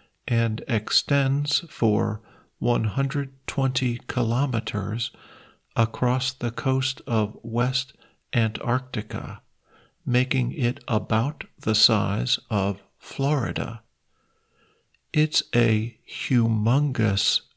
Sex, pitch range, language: male, 110-135 Hz, Thai